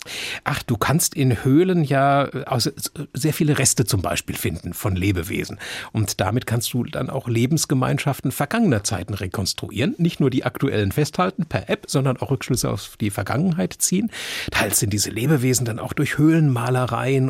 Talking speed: 160 wpm